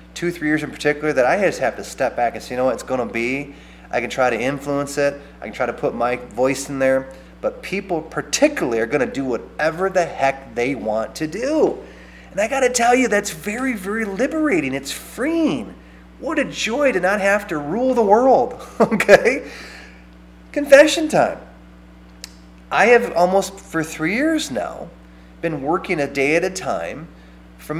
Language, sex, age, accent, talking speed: English, male, 30-49, American, 195 wpm